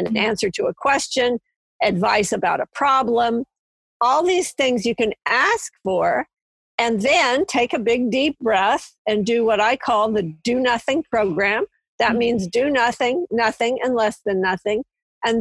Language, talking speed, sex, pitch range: English, 165 wpm, female, 215-255 Hz